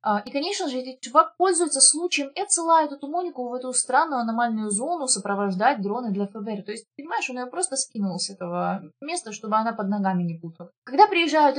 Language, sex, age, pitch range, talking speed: Russian, female, 20-39, 195-265 Hz, 190 wpm